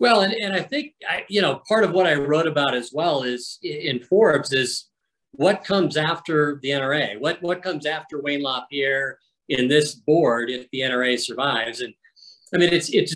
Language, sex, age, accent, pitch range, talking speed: English, male, 50-69, American, 125-155 Hz, 195 wpm